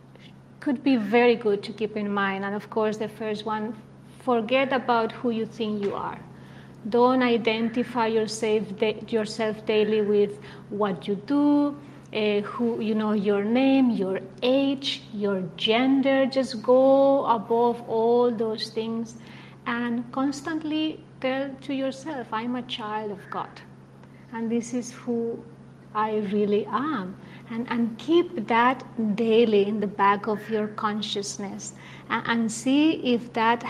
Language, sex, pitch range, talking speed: English, female, 210-240 Hz, 140 wpm